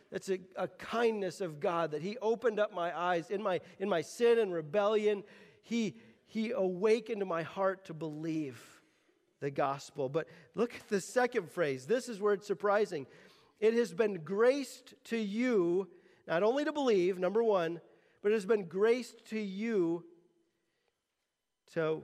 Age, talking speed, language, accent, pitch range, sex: 40-59, 160 wpm, English, American, 195-280 Hz, male